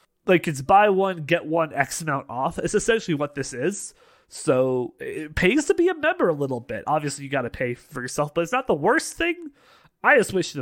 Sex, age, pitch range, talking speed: male, 30-49, 130-180 Hz, 230 wpm